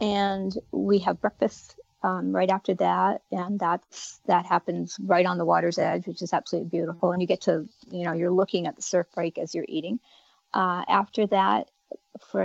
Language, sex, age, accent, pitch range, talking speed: English, female, 40-59, American, 170-200 Hz, 195 wpm